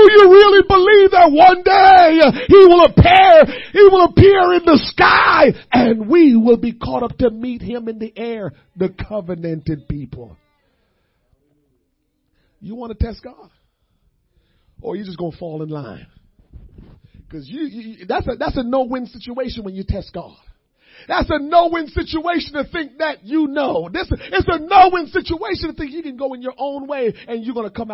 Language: English